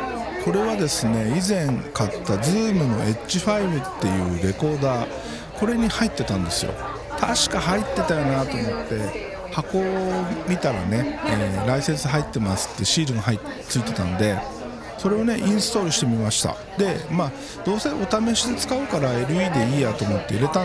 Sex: male